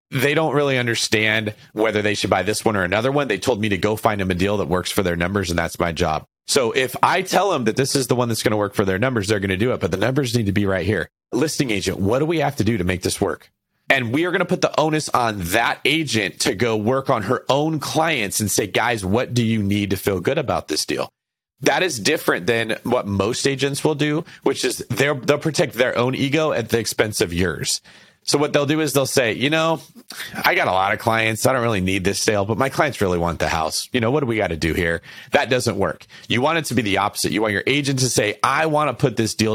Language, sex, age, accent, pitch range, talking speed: English, male, 30-49, American, 100-135 Hz, 280 wpm